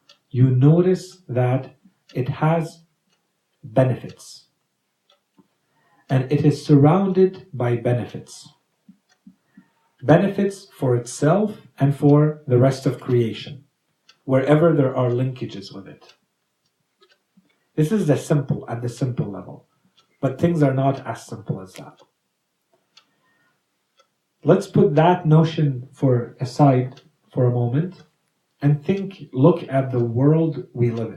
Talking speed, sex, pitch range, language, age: 115 wpm, male, 125-170 Hz, English, 50-69